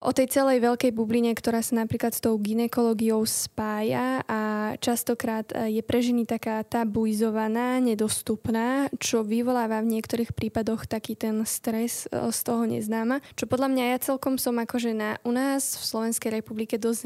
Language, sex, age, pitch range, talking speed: Slovak, female, 10-29, 225-245 Hz, 160 wpm